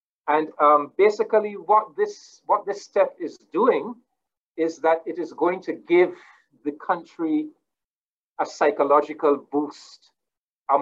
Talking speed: 130 wpm